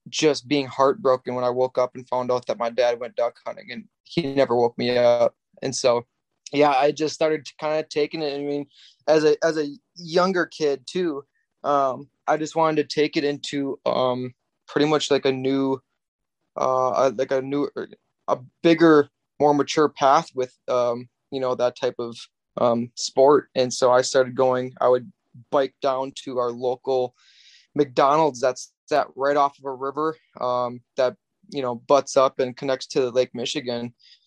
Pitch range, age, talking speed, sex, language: 125-145 Hz, 20-39, 185 wpm, male, English